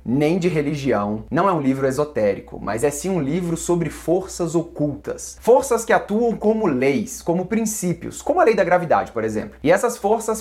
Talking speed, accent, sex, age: 190 wpm, Brazilian, male, 20-39